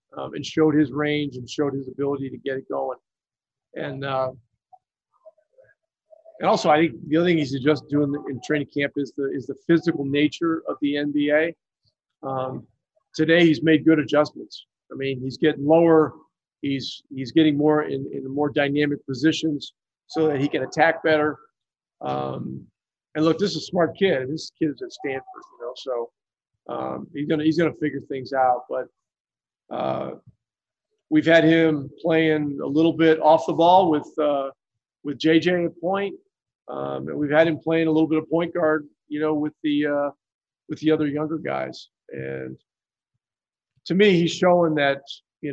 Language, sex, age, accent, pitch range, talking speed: English, male, 50-69, American, 140-165 Hz, 180 wpm